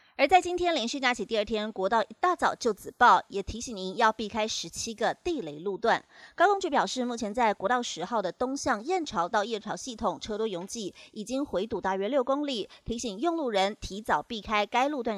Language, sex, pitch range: Chinese, female, 210-275 Hz